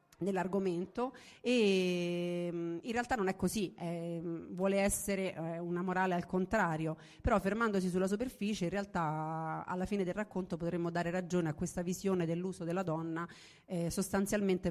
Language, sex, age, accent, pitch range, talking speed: Italian, female, 40-59, native, 165-200 Hz, 145 wpm